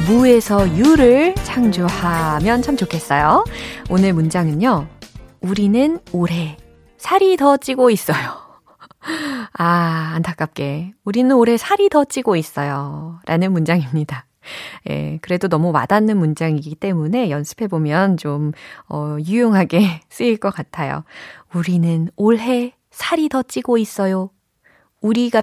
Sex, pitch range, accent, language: female, 155-235 Hz, native, Korean